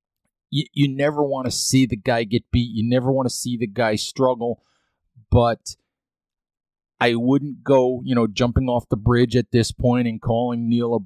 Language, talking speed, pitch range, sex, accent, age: English, 185 wpm, 110-130 Hz, male, American, 30-49